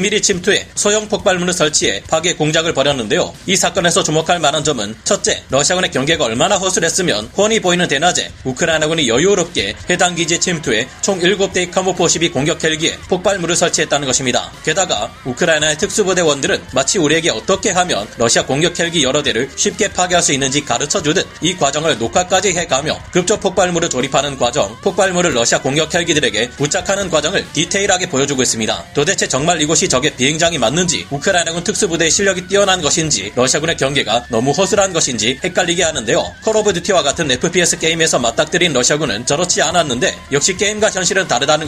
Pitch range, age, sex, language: 150-190 Hz, 30-49, male, Korean